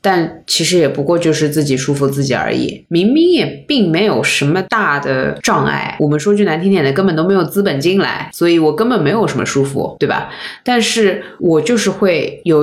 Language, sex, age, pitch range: Chinese, female, 20-39, 150-220 Hz